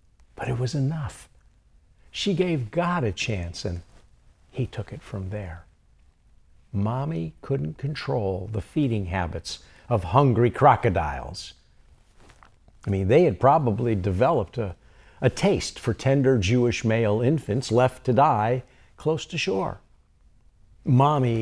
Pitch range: 85-130 Hz